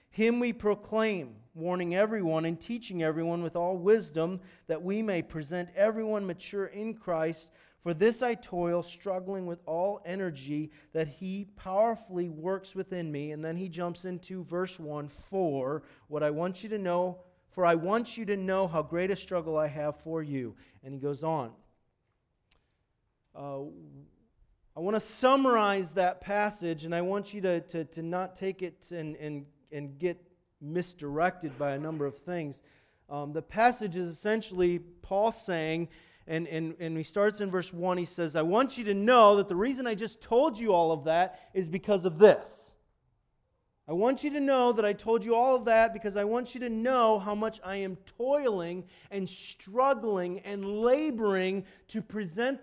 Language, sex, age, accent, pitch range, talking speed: English, male, 40-59, American, 165-215 Hz, 180 wpm